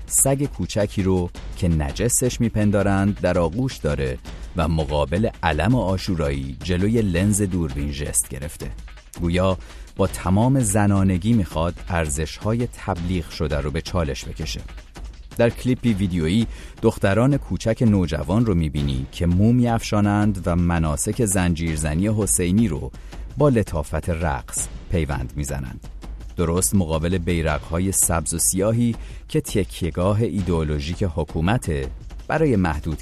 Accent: Canadian